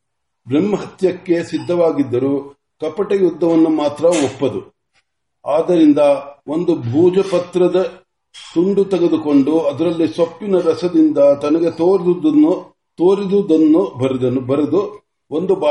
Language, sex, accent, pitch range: Marathi, male, native, 140-180 Hz